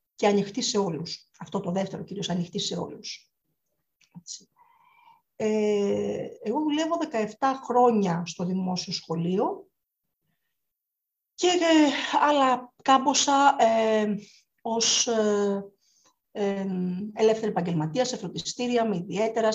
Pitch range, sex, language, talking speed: 190-260 Hz, female, Greek, 105 wpm